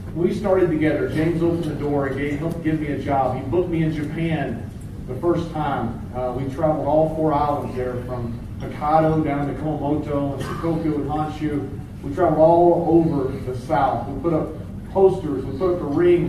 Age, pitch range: 40-59, 125-155 Hz